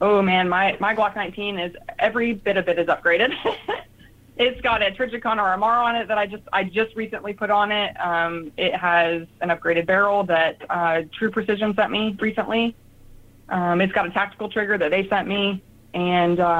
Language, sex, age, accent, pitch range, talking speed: English, female, 20-39, American, 170-210 Hz, 190 wpm